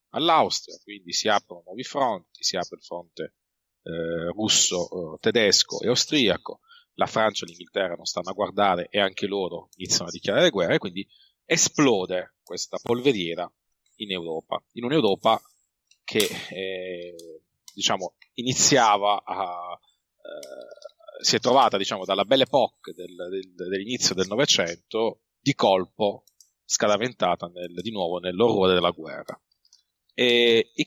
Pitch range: 90-125 Hz